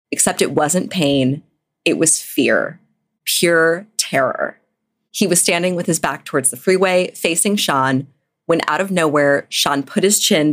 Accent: American